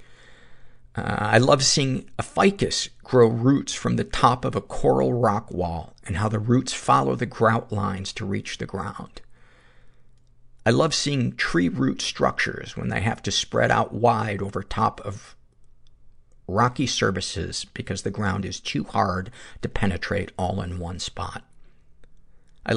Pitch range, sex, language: 100-125 Hz, male, English